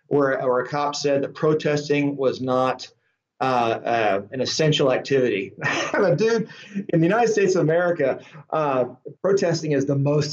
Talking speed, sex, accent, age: 150 wpm, male, American, 40-59